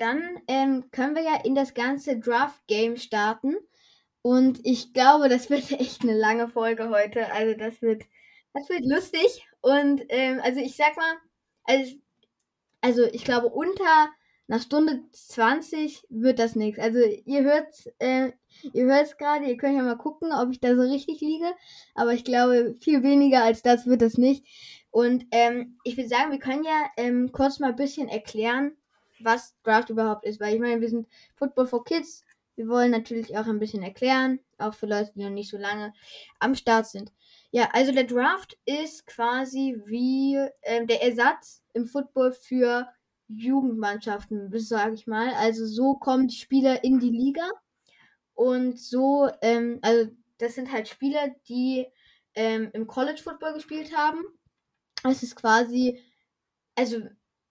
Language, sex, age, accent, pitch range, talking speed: German, female, 10-29, German, 230-280 Hz, 170 wpm